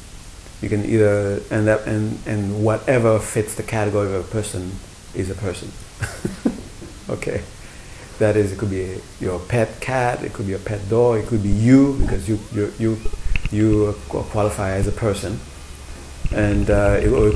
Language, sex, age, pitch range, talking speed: English, male, 30-49, 95-110 Hz, 175 wpm